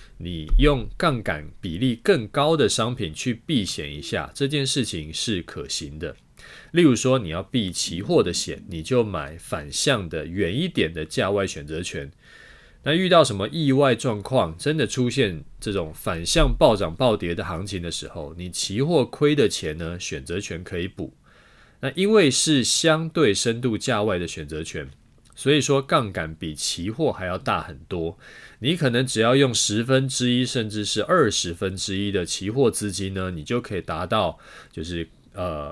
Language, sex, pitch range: Chinese, male, 90-130 Hz